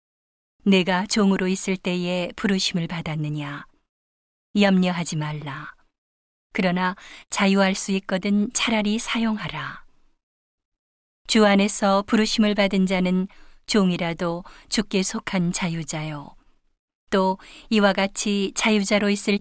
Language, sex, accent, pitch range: Korean, female, native, 170-205 Hz